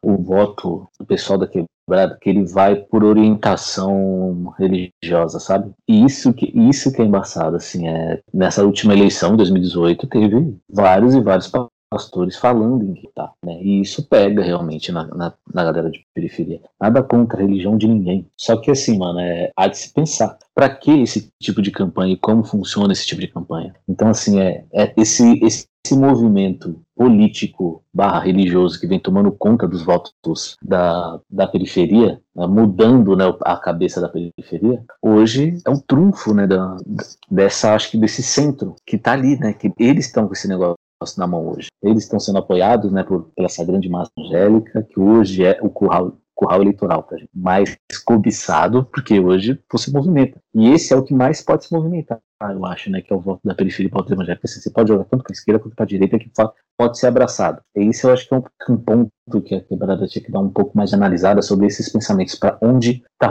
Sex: male